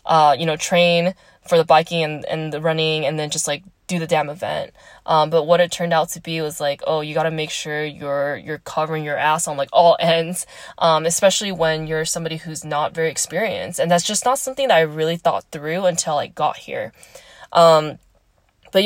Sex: female